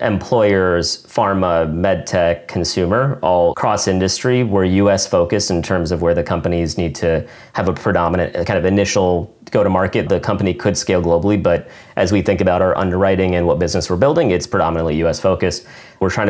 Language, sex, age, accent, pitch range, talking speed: English, male, 30-49, American, 85-100 Hz, 175 wpm